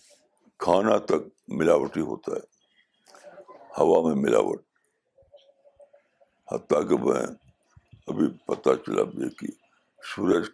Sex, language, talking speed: male, Urdu, 100 wpm